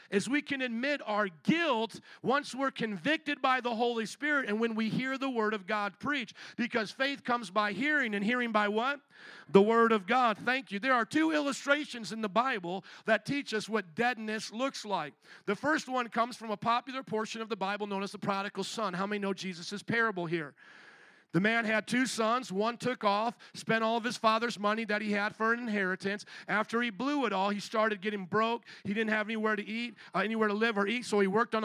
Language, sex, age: English, male, 50-69